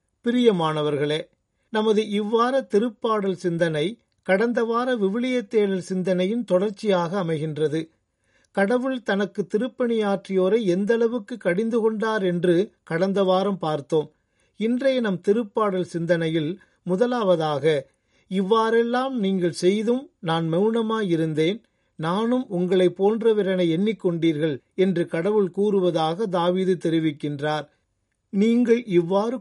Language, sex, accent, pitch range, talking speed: Tamil, male, native, 165-220 Hz, 90 wpm